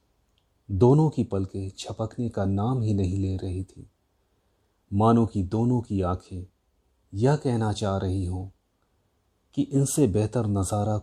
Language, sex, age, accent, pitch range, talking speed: Hindi, male, 30-49, native, 95-115 Hz, 135 wpm